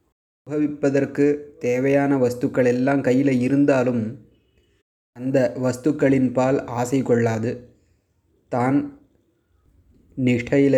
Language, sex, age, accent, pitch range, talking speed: Tamil, male, 20-39, native, 115-145 Hz, 70 wpm